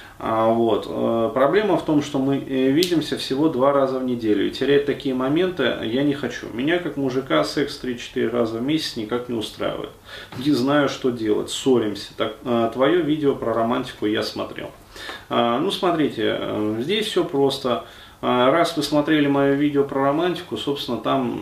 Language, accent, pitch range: Russian, native, 115-140 Hz